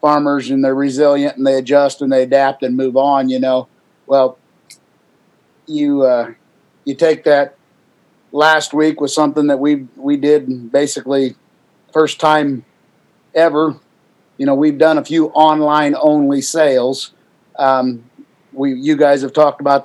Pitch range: 135-145 Hz